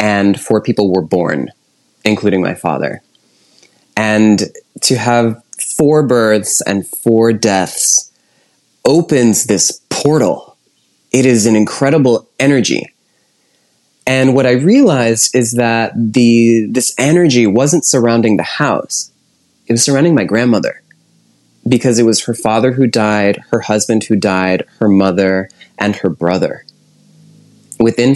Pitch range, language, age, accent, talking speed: 105-130 Hz, English, 20-39, American, 125 wpm